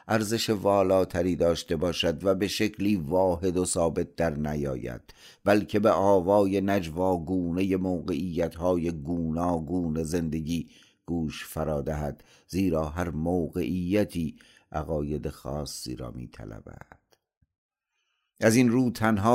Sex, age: male, 50-69